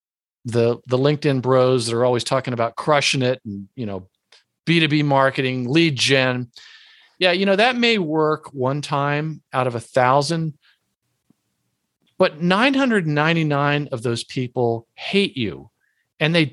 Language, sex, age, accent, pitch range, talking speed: English, male, 50-69, American, 115-155 Hz, 160 wpm